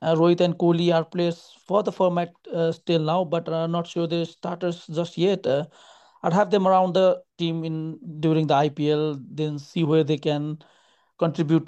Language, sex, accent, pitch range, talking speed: English, male, Indian, 145-165 Hz, 190 wpm